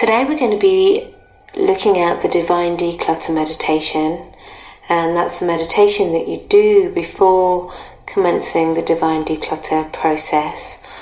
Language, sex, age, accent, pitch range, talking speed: English, female, 30-49, British, 160-260 Hz, 130 wpm